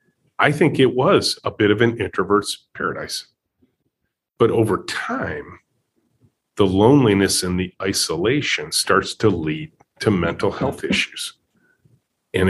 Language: English